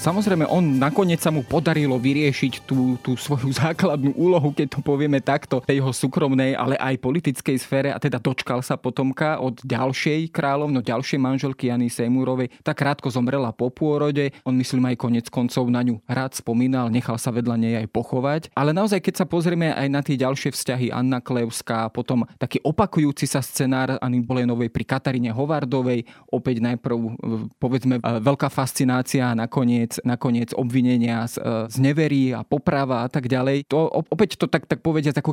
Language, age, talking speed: Slovak, 20-39, 170 wpm